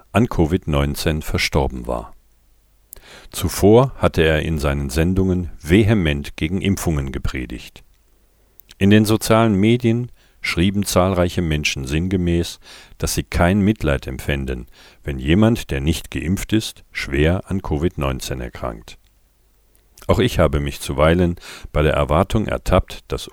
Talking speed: 120 wpm